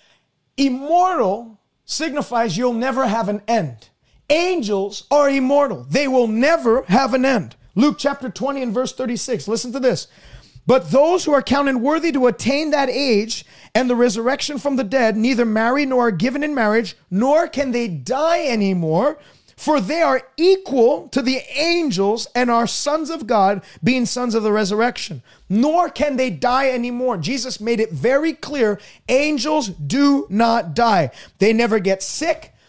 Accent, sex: American, male